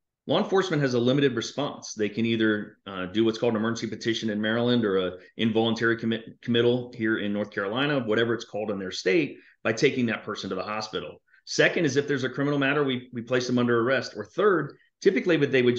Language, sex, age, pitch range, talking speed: English, male, 30-49, 105-125 Hz, 215 wpm